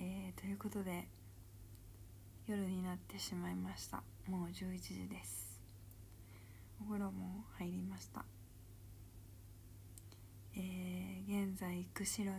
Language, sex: Japanese, female